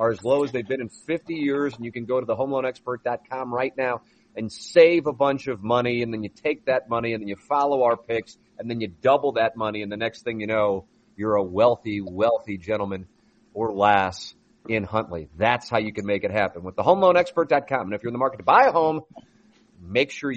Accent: American